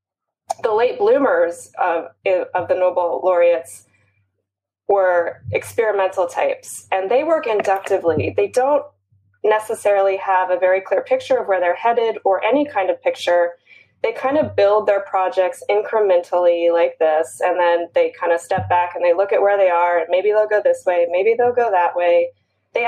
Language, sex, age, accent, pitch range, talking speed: English, female, 20-39, American, 175-235 Hz, 175 wpm